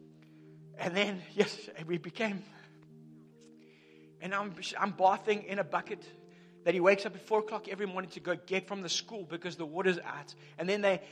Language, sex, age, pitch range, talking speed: English, male, 30-49, 155-210 Hz, 185 wpm